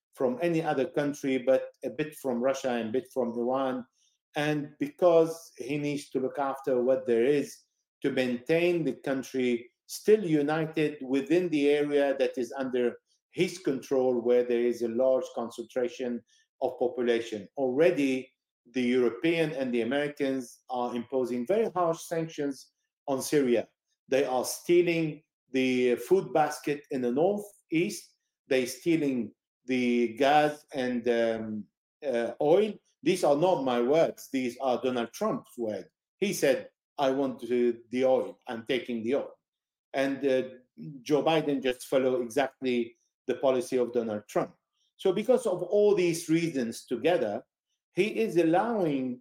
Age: 50-69